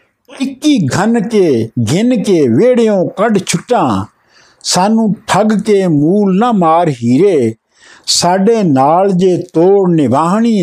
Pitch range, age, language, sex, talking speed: 155-220 Hz, 60-79, Punjabi, male, 115 wpm